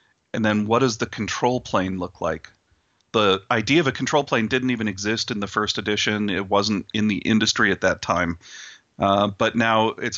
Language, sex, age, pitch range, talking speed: English, male, 40-59, 100-120 Hz, 200 wpm